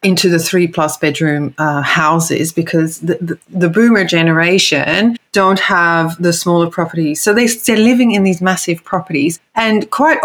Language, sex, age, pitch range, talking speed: English, female, 30-49, 155-205 Hz, 165 wpm